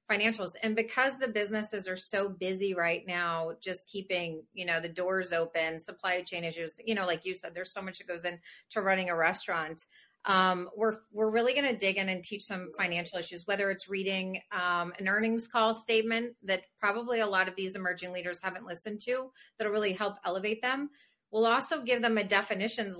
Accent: American